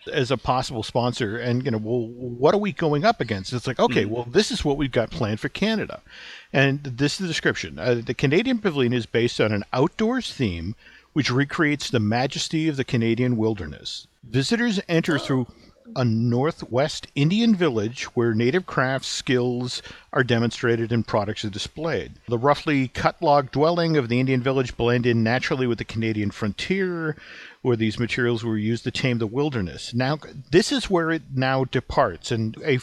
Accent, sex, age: American, male, 50-69